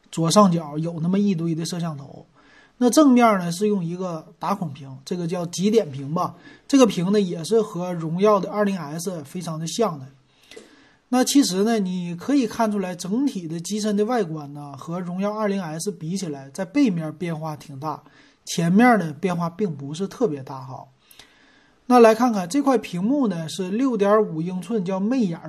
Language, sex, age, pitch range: Chinese, male, 30-49, 155-210 Hz